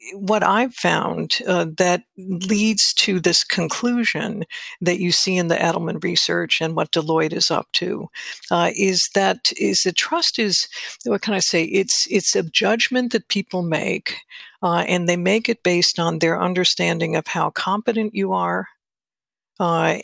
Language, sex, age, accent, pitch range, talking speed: English, female, 60-79, American, 170-210 Hz, 165 wpm